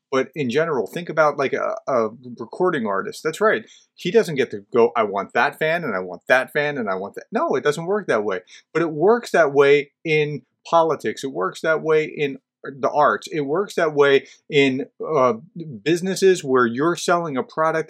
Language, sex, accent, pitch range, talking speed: English, male, American, 135-180 Hz, 210 wpm